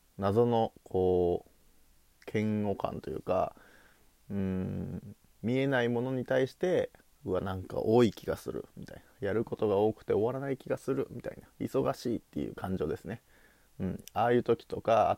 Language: Japanese